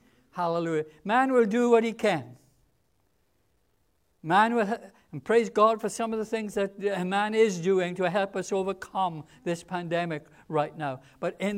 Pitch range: 155-210 Hz